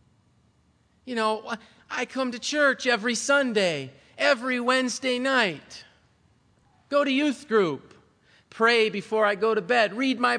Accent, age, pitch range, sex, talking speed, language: American, 40-59, 190-260 Hz, male, 135 wpm, English